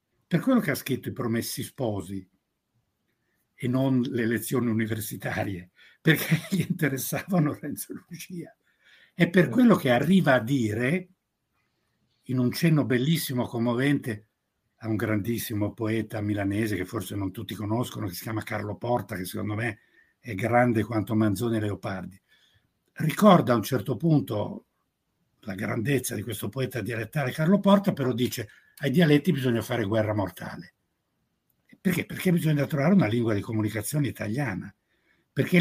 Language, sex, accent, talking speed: Italian, male, native, 145 wpm